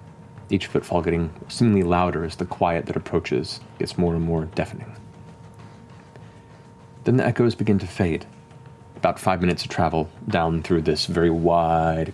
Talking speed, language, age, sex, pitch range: 155 wpm, English, 30-49, male, 85-115 Hz